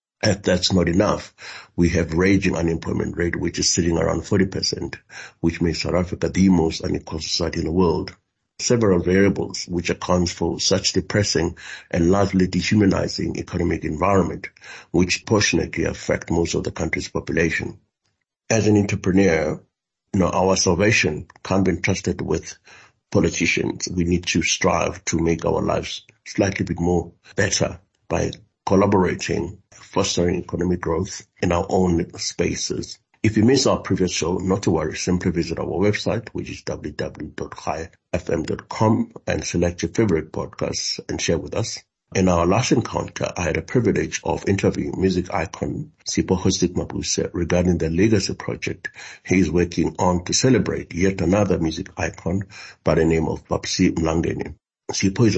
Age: 60-79